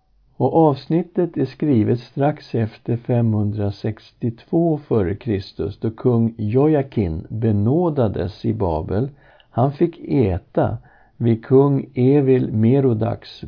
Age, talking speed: 60-79, 100 wpm